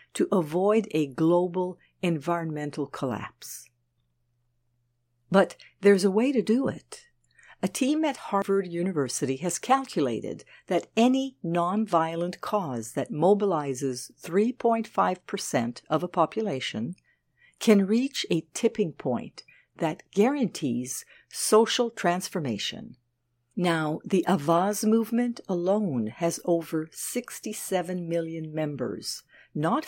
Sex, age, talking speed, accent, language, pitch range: female, 60-79, 100 wpm, American, English, 140-195 Hz